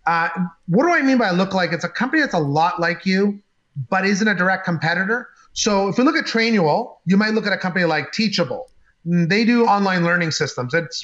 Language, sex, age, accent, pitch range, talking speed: English, male, 30-49, American, 165-215 Hz, 225 wpm